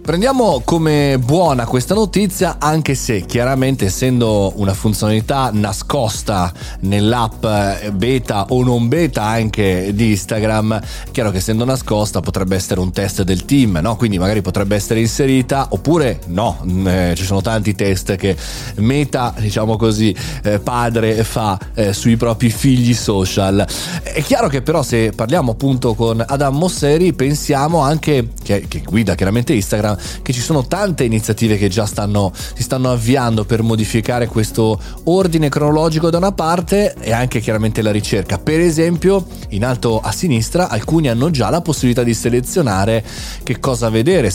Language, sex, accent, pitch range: Italian, male, native, 105-140 Hz